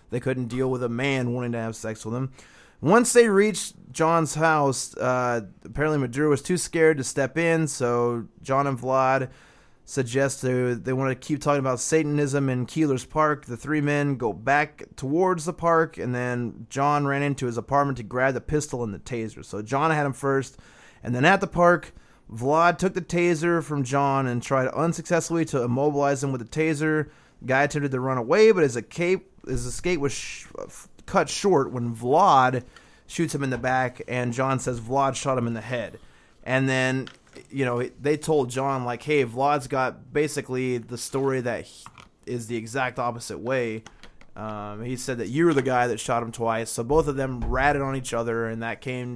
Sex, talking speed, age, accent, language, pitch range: male, 200 wpm, 20-39, American, English, 125-150 Hz